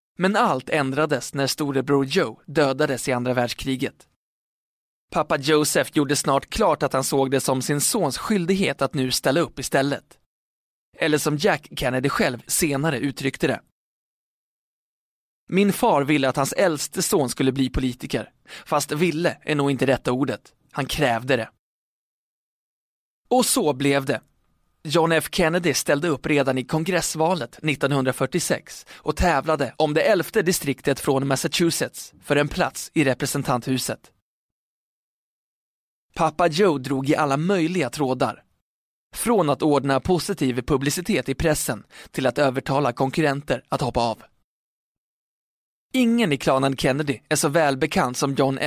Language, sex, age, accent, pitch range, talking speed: Swedish, male, 20-39, native, 135-160 Hz, 140 wpm